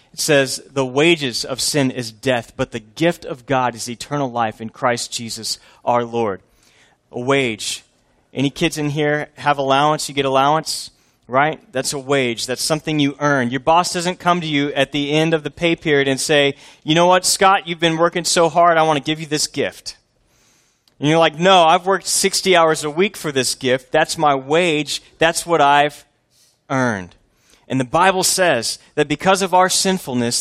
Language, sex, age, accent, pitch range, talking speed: English, male, 30-49, American, 120-160 Hz, 195 wpm